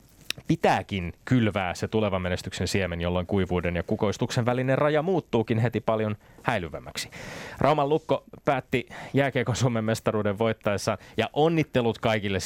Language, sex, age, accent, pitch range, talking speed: Finnish, male, 20-39, native, 100-125 Hz, 125 wpm